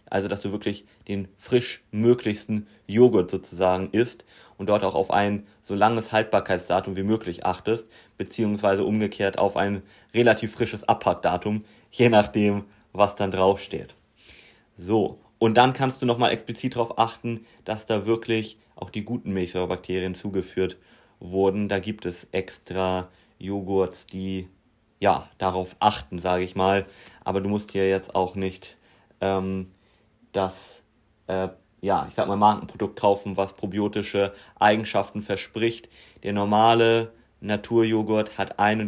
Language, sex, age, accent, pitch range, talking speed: German, male, 30-49, German, 95-110 Hz, 135 wpm